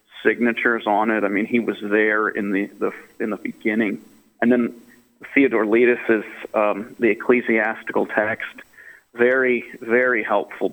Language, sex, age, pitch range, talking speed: English, male, 40-59, 110-125 Hz, 140 wpm